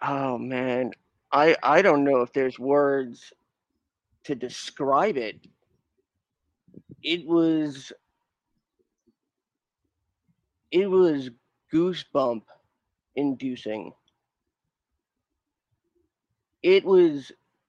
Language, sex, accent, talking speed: English, male, American, 70 wpm